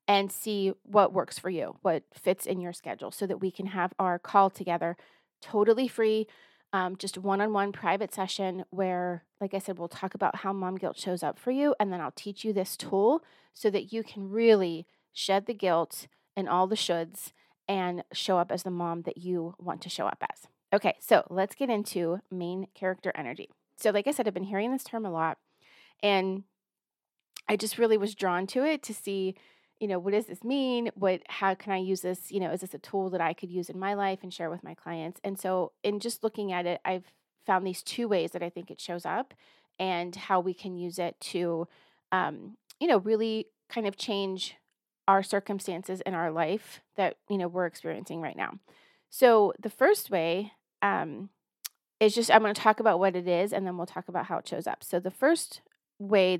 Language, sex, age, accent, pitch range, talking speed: English, female, 30-49, American, 180-210 Hz, 215 wpm